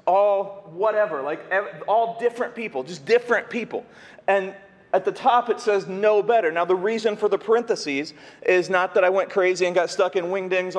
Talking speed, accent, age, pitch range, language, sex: 195 wpm, American, 30-49, 175-215 Hz, English, male